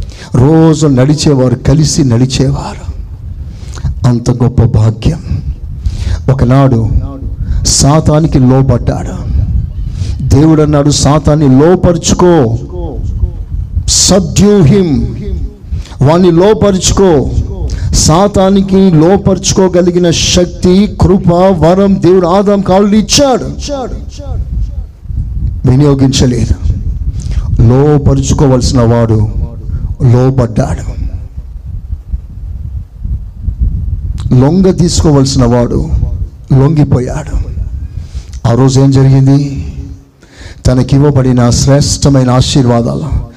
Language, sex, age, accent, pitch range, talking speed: Telugu, male, 60-79, native, 90-145 Hz, 55 wpm